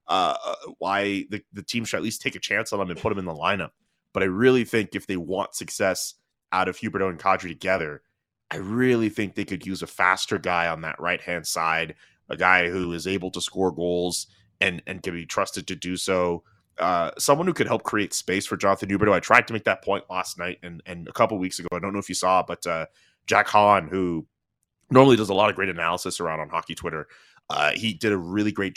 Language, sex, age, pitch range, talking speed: English, male, 30-49, 90-105 Hz, 240 wpm